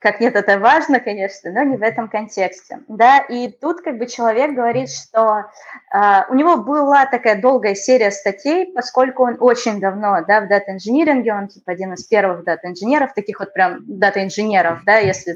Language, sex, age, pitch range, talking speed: Russian, female, 20-39, 200-265 Hz, 180 wpm